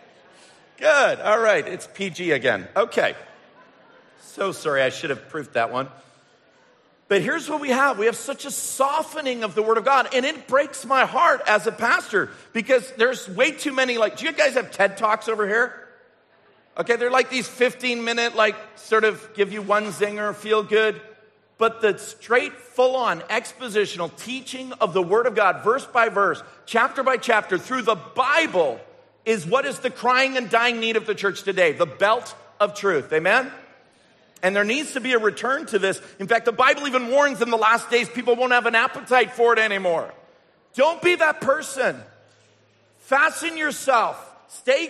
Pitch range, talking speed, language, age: 210-260 Hz, 185 wpm, English, 50-69